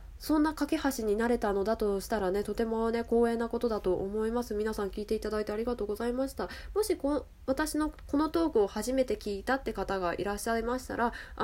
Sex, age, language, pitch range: female, 20-39, Japanese, 200-280 Hz